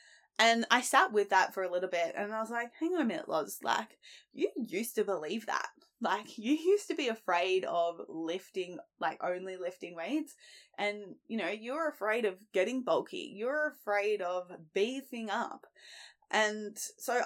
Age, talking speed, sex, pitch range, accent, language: 10-29, 175 wpm, female, 185-280 Hz, Australian, English